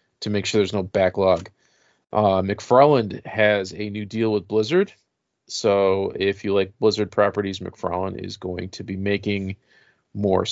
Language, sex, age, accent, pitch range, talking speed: English, male, 40-59, American, 100-120 Hz, 155 wpm